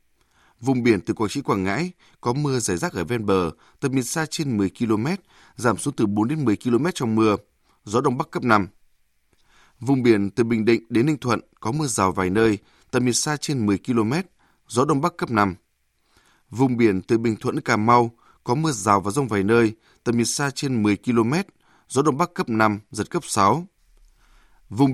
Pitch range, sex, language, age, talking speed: 105-140 Hz, male, Vietnamese, 20-39, 210 wpm